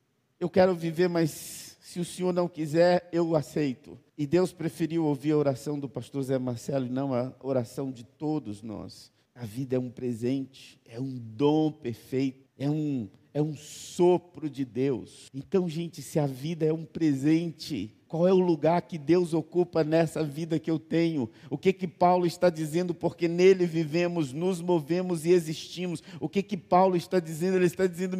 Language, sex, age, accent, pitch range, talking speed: Portuguese, male, 50-69, Brazilian, 145-185 Hz, 180 wpm